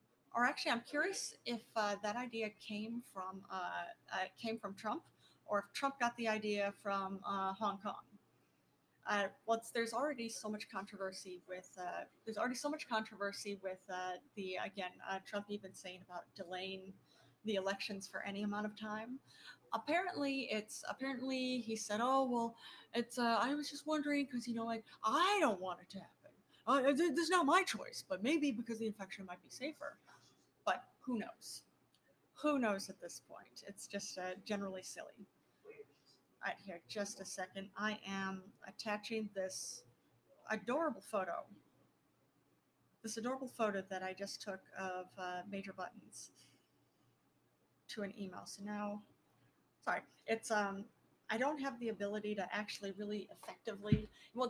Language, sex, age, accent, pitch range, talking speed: English, female, 30-49, American, 195-240 Hz, 160 wpm